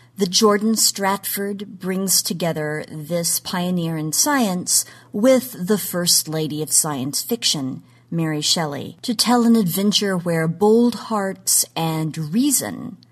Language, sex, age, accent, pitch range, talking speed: English, female, 40-59, American, 150-205 Hz, 125 wpm